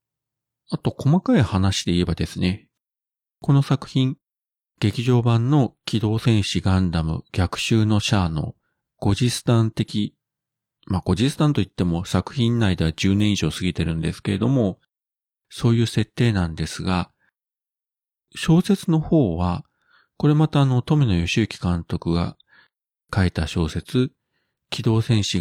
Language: Japanese